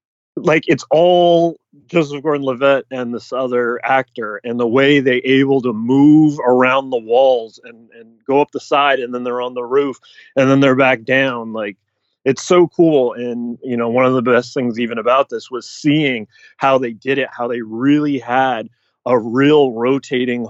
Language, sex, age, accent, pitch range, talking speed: English, male, 30-49, American, 115-140 Hz, 190 wpm